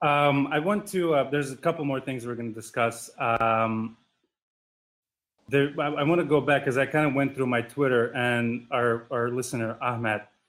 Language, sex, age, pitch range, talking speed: English, male, 30-49, 115-140 Hz, 200 wpm